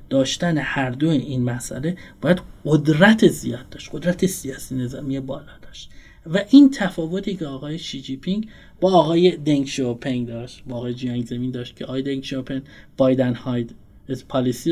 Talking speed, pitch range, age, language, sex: 165 wpm, 130-200 Hz, 30-49, Persian, male